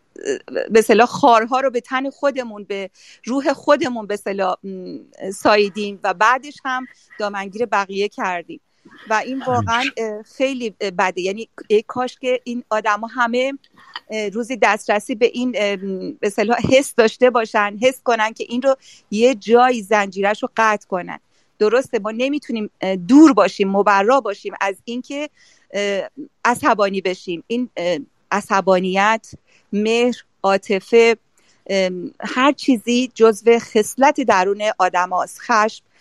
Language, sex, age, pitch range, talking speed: Persian, female, 40-59, 200-260 Hz, 115 wpm